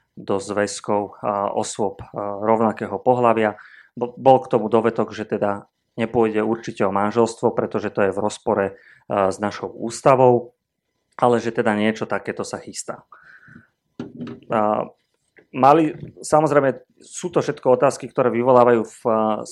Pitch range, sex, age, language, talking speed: 110-125 Hz, male, 30-49, Slovak, 140 wpm